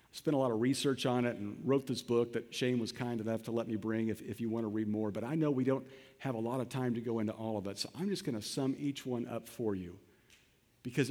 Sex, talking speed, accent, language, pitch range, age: male, 295 wpm, American, English, 120-170 Hz, 50-69